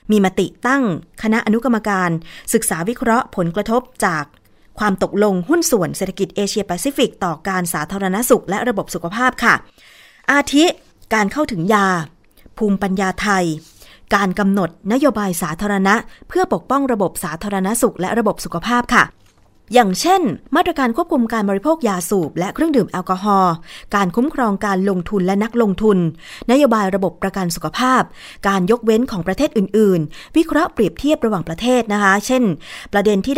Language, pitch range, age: Thai, 190-245 Hz, 20-39